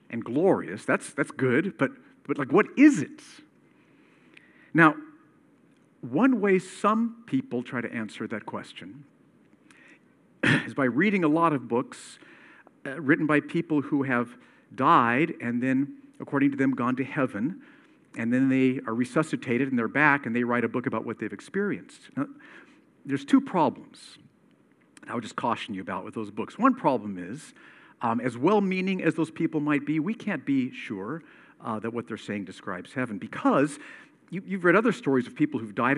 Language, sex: English, male